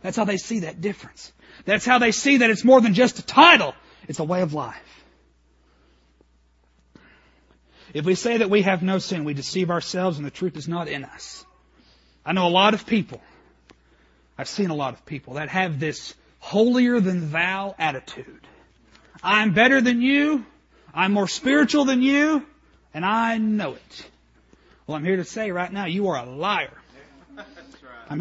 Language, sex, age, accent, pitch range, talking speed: English, male, 40-59, American, 150-235 Hz, 180 wpm